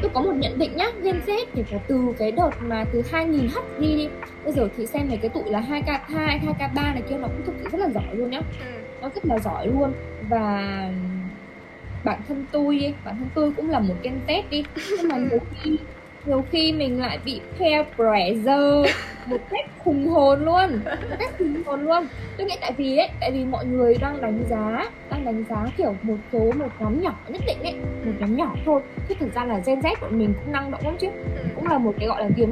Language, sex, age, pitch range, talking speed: Vietnamese, female, 10-29, 225-300 Hz, 235 wpm